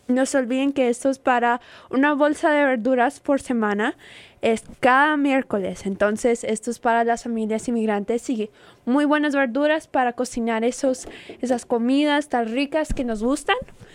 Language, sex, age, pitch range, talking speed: English, female, 20-39, 220-265 Hz, 160 wpm